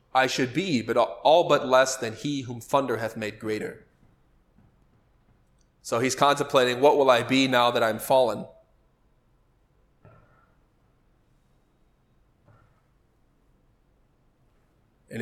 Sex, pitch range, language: male, 115-130 Hz, English